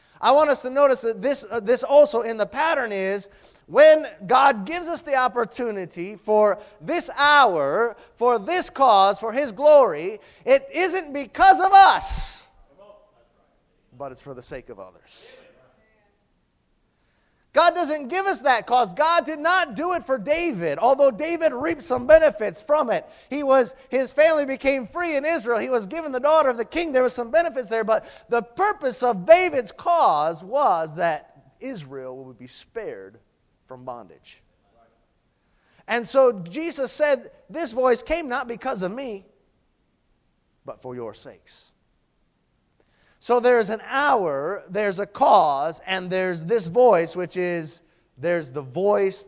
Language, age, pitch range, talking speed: English, 30-49, 180-300 Hz, 155 wpm